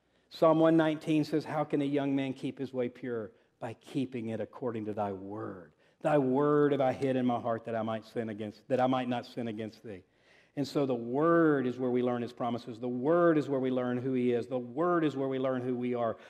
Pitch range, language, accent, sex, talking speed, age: 130-185 Hz, English, American, male, 245 wpm, 50-69